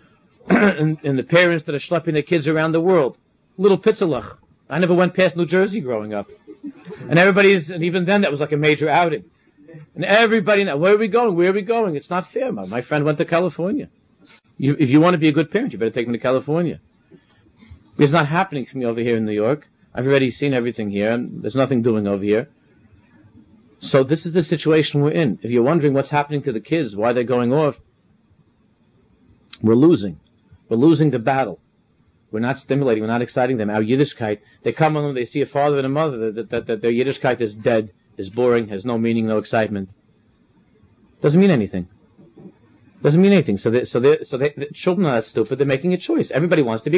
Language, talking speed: English, 215 wpm